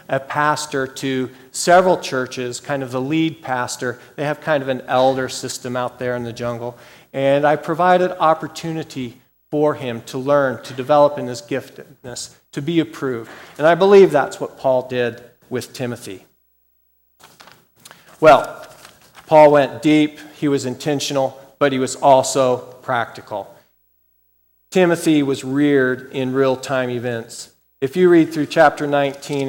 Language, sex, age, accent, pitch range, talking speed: English, male, 40-59, American, 125-155 Hz, 145 wpm